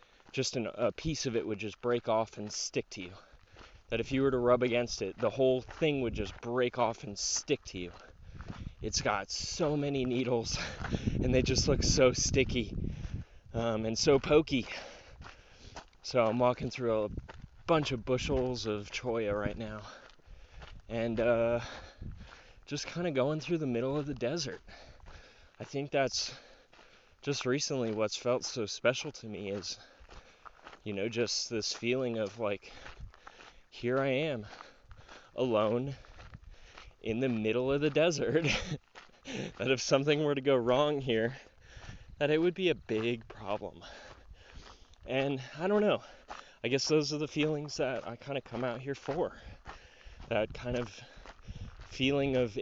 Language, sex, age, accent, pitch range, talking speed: English, male, 20-39, American, 110-140 Hz, 155 wpm